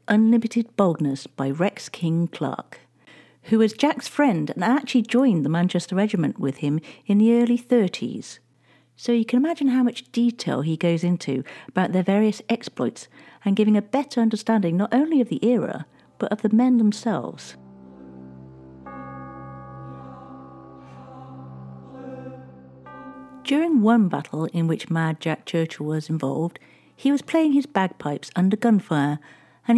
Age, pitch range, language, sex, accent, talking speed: 50-69, 145-230 Hz, English, female, British, 140 wpm